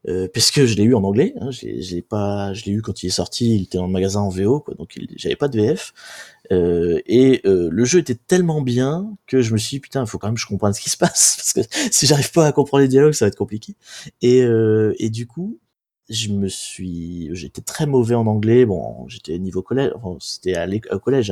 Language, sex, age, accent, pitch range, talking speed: French, male, 20-39, French, 95-130 Hz, 260 wpm